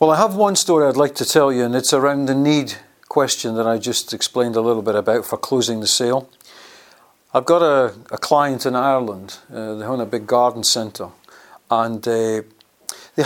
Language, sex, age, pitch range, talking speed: English, male, 50-69, 120-150 Hz, 205 wpm